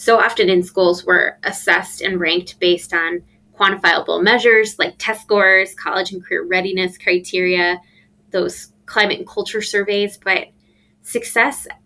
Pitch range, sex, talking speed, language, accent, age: 180-220 Hz, female, 135 wpm, English, American, 20-39